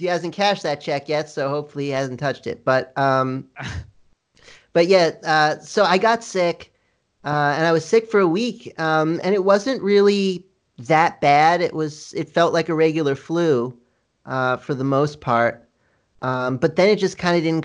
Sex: male